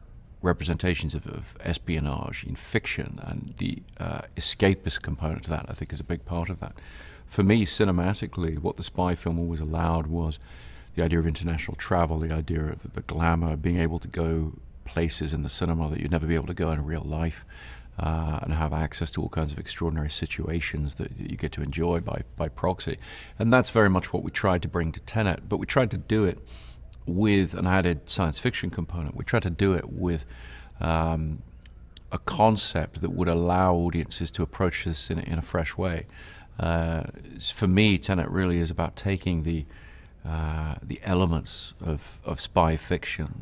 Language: English